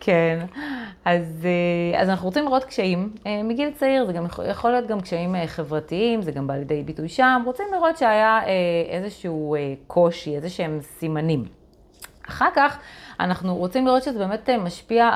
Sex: female